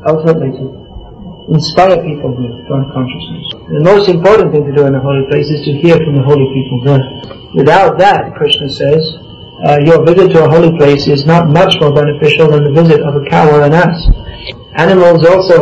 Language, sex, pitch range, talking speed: English, male, 140-165 Hz, 200 wpm